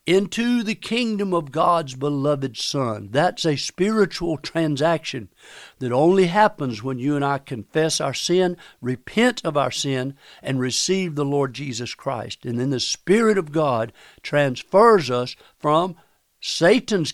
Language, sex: English, male